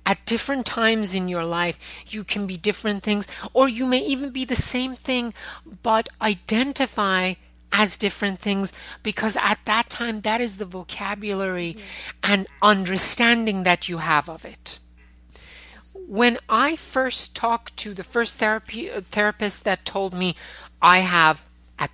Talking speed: 150 wpm